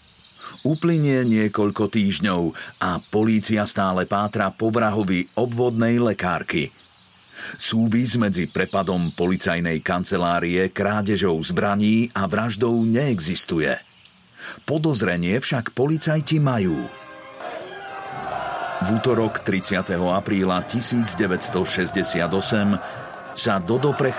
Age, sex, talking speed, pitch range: 50-69, male, 75 wpm, 95-120 Hz